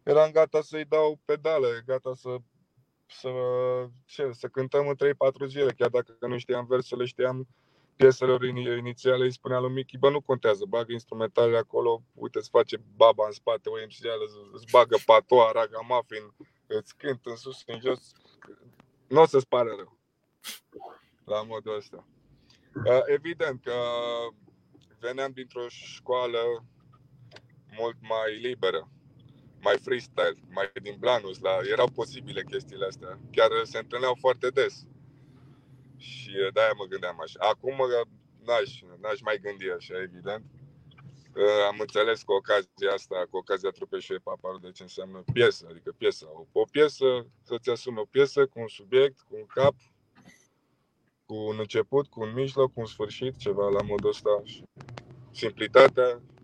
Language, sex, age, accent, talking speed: Romanian, male, 20-39, native, 140 wpm